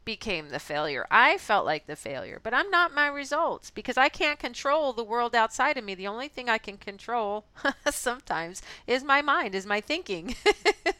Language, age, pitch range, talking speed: English, 40-59, 180-250 Hz, 190 wpm